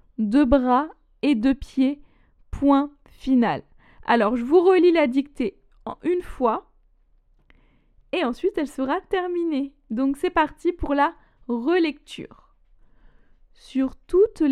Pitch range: 250-305 Hz